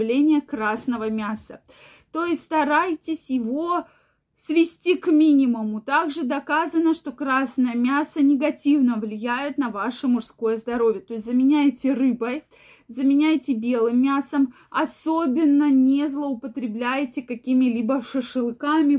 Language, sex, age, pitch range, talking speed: Russian, female, 20-39, 235-285 Hz, 100 wpm